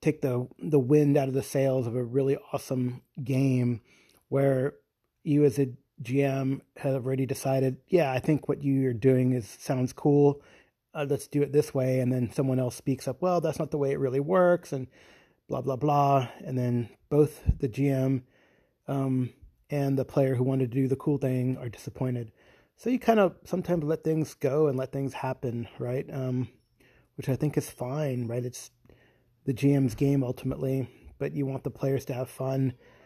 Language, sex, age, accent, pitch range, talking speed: English, male, 30-49, American, 125-145 Hz, 190 wpm